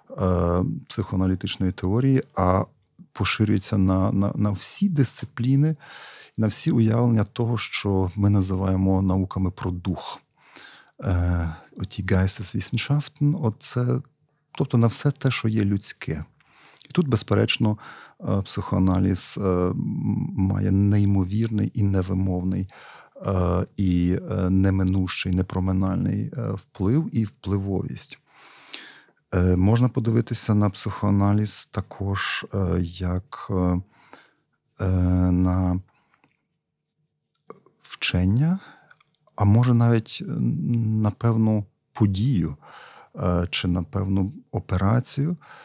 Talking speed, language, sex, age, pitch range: 85 wpm, Ukrainian, male, 40-59, 95-120 Hz